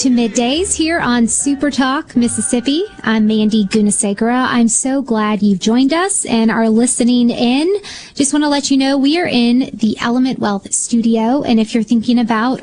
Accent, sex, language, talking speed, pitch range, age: American, female, English, 180 wpm, 215-260 Hz, 20-39